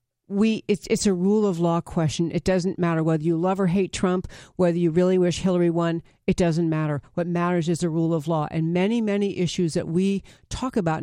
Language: English